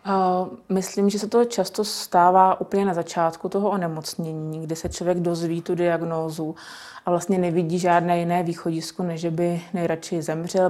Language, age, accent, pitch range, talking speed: Czech, 20-39, native, 165-185 Hz, 150 wpm